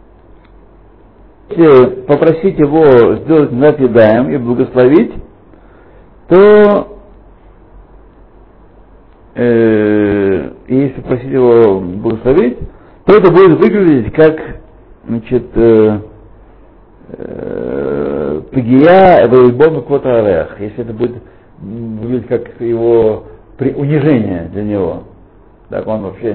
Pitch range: 100-140 Hz